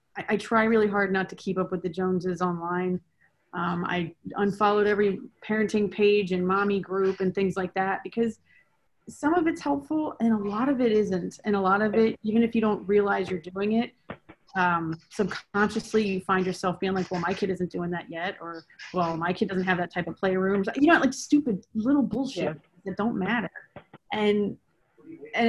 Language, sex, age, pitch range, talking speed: English, female, 30-49, 185-225 Hz, 200 wpm